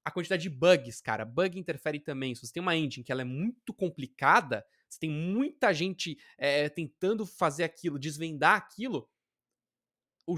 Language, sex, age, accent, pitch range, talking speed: Portuguese, male, 20-39, Brazilian, 145-200 Hz, 170 wpm